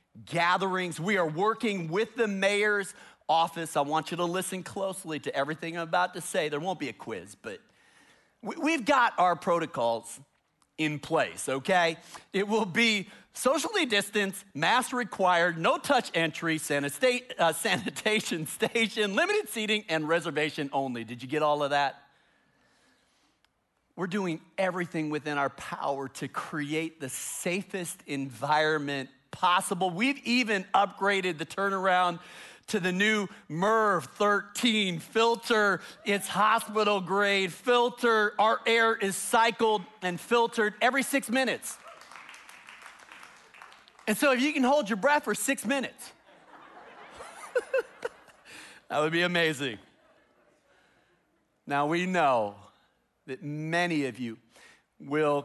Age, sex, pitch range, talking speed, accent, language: 40-59, male, 160-215 Hz, 130 wpm, American, English